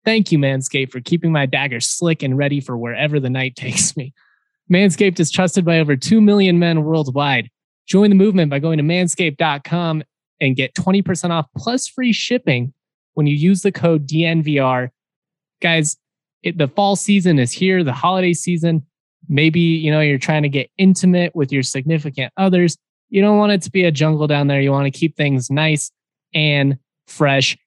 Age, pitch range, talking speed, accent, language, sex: 20-39, 140-170 Hz, 180 wpm, American, English, male